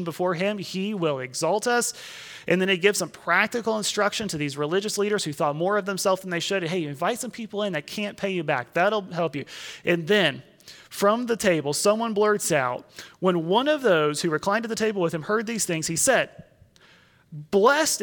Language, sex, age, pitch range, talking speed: English, male, 30-49, 170-230 Hz, 210 wpm